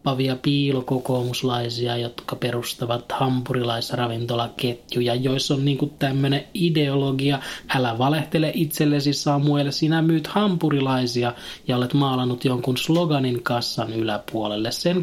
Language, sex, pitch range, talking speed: Finnish, male, 125-160 Hz, 95 wpm